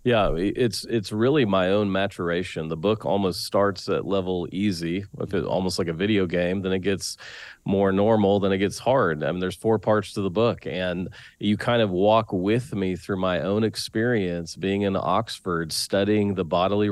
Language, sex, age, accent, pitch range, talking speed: English, male, 40-59, American, 90-110 Hz, 190 wpm